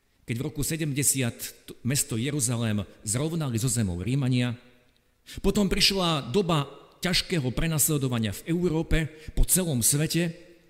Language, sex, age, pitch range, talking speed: Slovak, male, 50-69, 115-170 Hz, 110 wpm